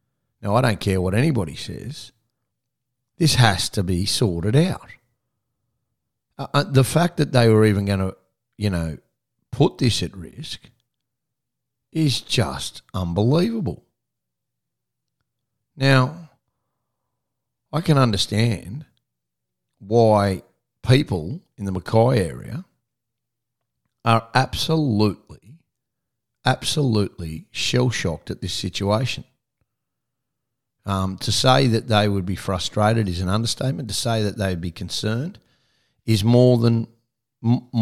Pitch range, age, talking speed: 105-130 Hz, 40-59, 110 wpm